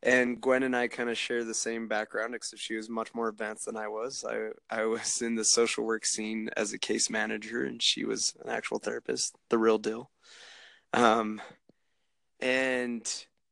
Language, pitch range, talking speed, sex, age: English, 110-125 Hz, 185 wpm, male, 20-39